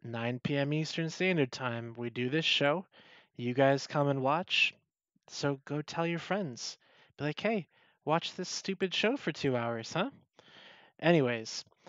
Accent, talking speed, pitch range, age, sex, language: American, 155 wpm, 125-155 Hz, 20-39, male, English